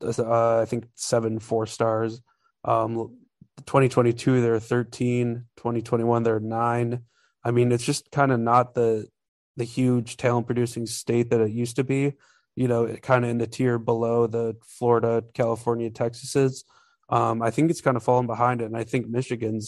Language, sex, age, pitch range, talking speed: English, male, 20-39, 115-125 Hz, 175 wpm